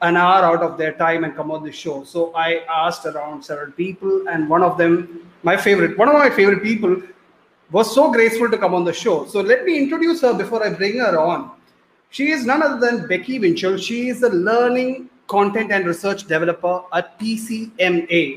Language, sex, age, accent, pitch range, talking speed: English, male, 30-49, Indian, 170-205 Hz, 205 wpm